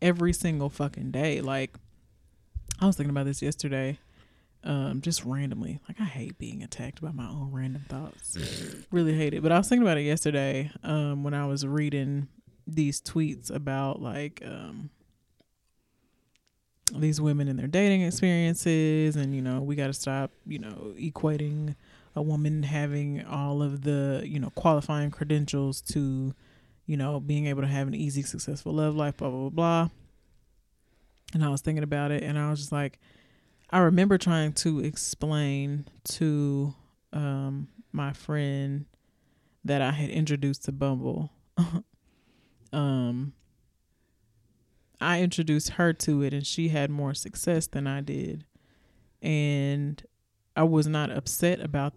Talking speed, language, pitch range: 150 wpm, English, 135-155 Hz